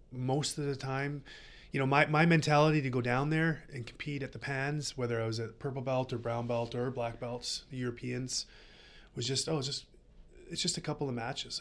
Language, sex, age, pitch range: English, male, 20-39, 115-135 Hz